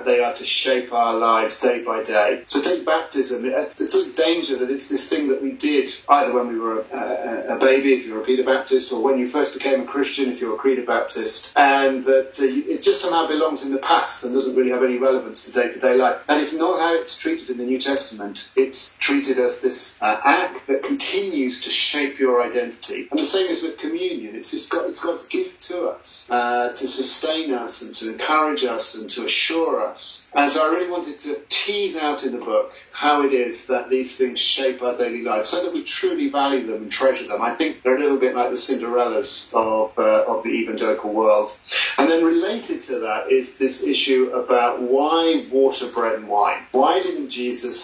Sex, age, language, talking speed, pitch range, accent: male, 40-59, English, 225 wpm, 120-165 Hz, British